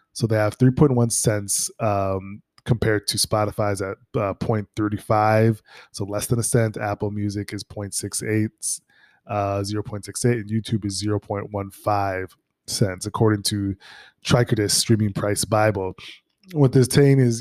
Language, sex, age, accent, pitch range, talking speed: English, male, 20-39, American, 100-115 Hz, 130 wpm